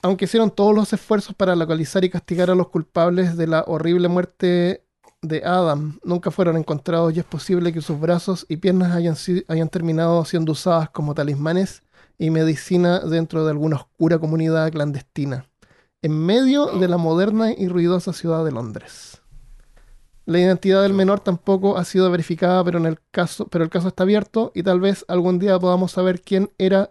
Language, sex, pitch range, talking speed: Spanish, male, 160-190 Hz, 170 wpm